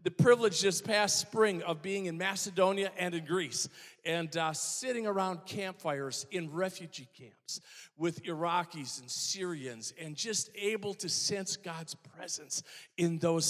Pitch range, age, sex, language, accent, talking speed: 165-205 Hz, 50-69, male, English, American, 145 wpm